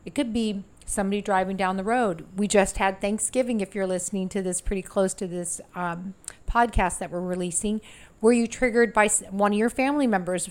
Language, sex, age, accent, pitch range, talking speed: English, female, 40-59, American, 180-215 Hz, 200 wpm